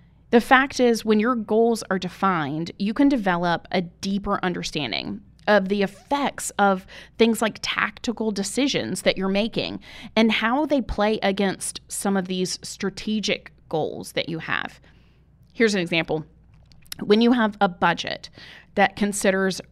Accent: American